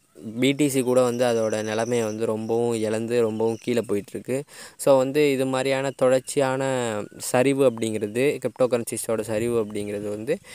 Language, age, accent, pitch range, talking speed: Tamil, 20-39, native, 110-130 Hz, 130 wpm